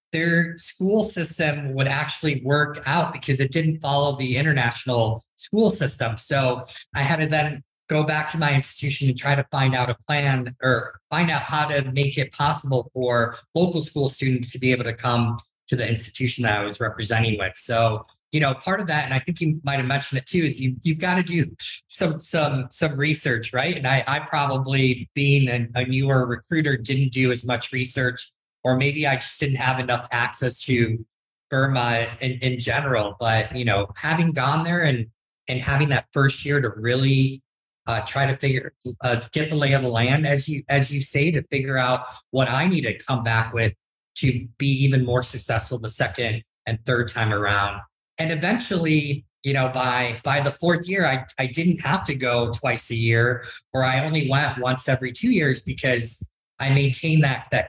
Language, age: English, 20-39